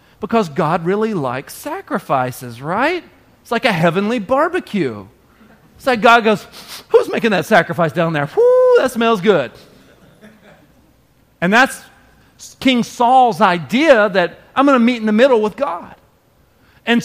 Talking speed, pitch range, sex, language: 140 wpm, 165-245 Hz, male, English